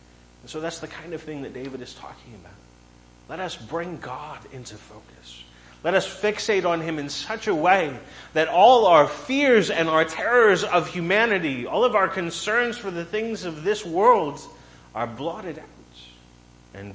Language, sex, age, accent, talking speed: English, male, 30-49, American, 175 wpm